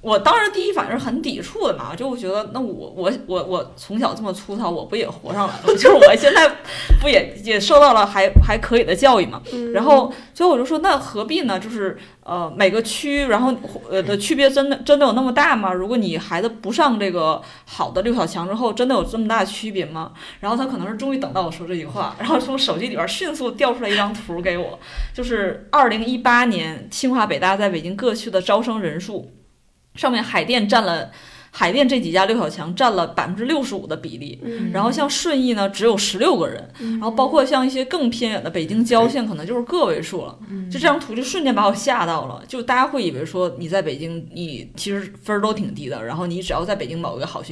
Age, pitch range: 20-39, 185-260 Hz